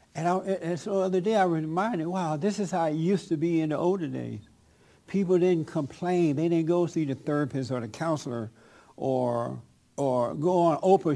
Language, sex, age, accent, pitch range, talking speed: English, male, 60-79, American, 130-175 Hz, 210 wpm